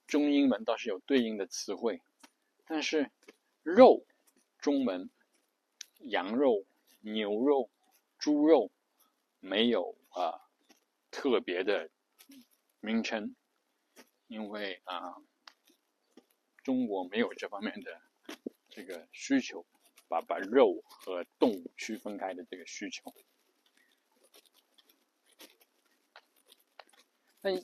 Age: 60-79